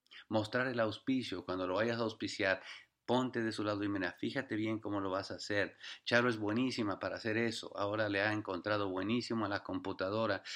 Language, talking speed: English, 200 wpm